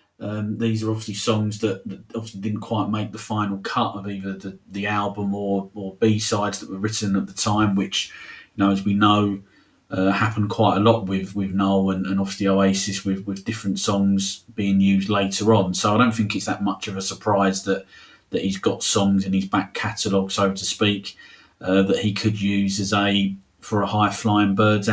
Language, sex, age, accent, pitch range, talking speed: English, male, 40-59, British, 95-110 Hz, 215 wpm